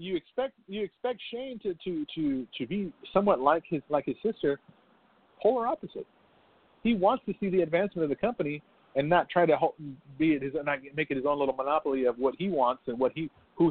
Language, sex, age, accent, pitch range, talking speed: English, male, 40-59, American, 130-175 Hz, 210 wpm